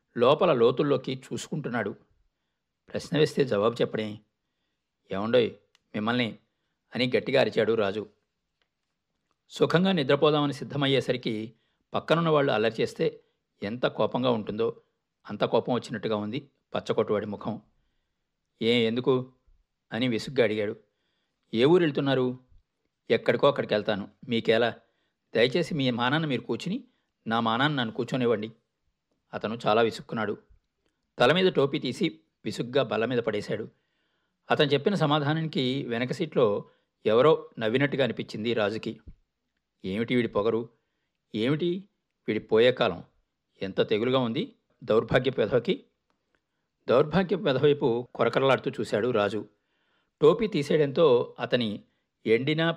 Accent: native